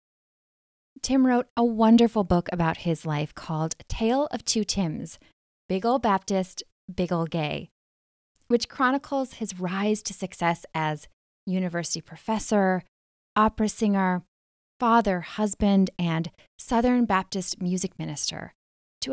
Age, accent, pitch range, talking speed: 20-39, American, 170-220 Hz, 120 wpm